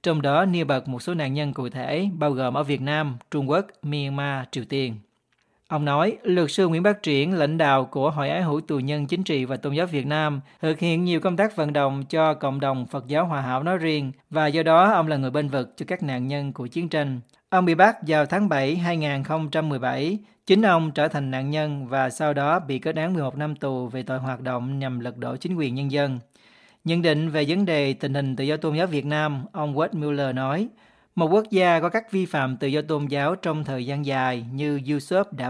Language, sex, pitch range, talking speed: Vietnamese, male, 140-170 Hz, 235 wpm